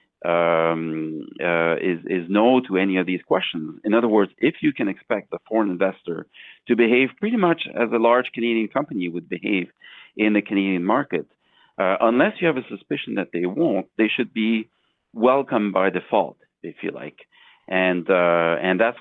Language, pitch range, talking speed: English, 85-110 Hz, 180 wpm